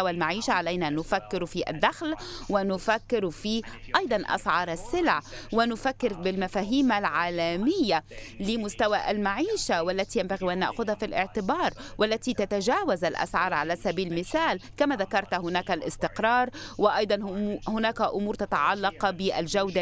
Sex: female